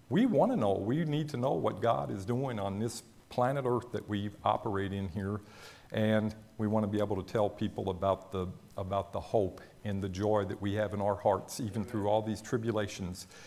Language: English